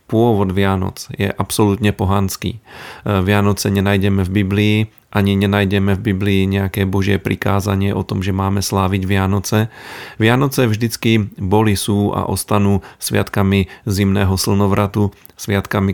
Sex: male